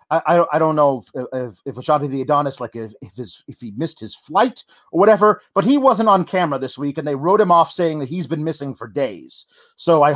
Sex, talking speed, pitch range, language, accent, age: male, 255 wpm, 155-215 Hz, English, American, 40-59